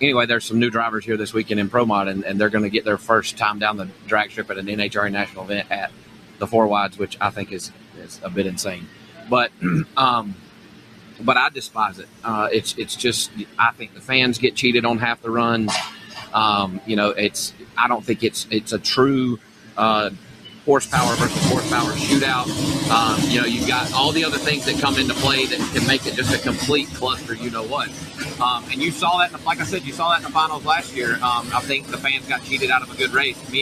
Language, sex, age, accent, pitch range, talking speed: English, male, 30-49, American, 110-140 Hz, 225 wpm